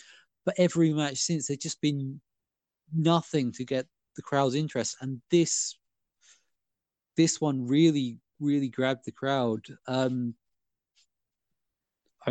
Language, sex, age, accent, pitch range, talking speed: English, male, 20-39, British, 120-145 Hz, 110 wpm